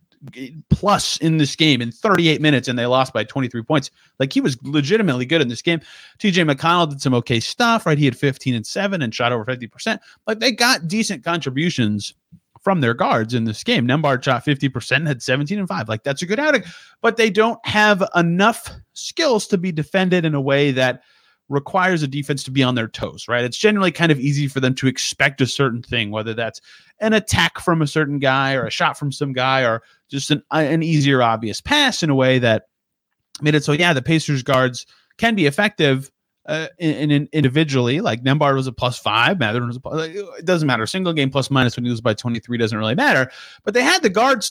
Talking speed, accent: 220 wpm, American